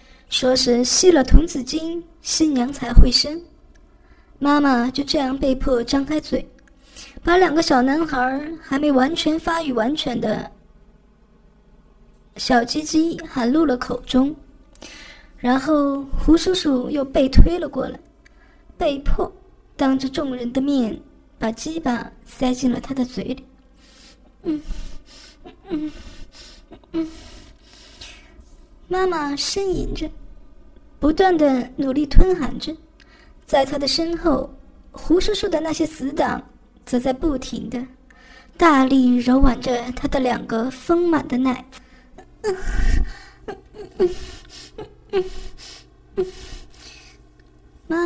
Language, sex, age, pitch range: Chinese, male, 20-39, 255-315 Hz